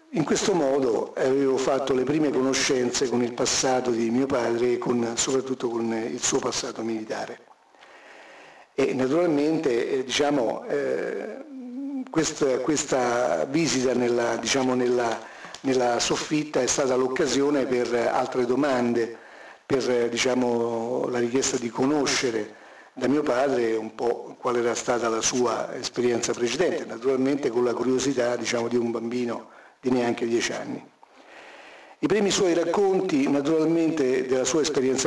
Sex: male